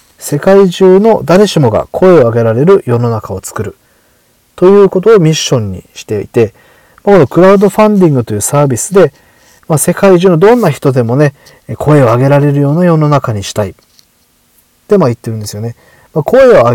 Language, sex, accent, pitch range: Japanese, male, native, 115-190 Hz